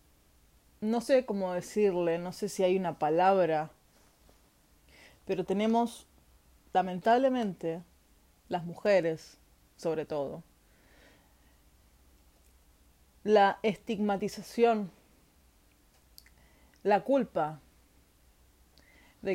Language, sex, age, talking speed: Spanish, female, 20-39, 70 wpm